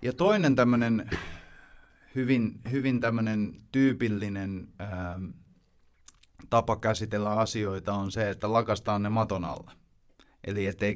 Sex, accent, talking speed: male, native, 110 wpm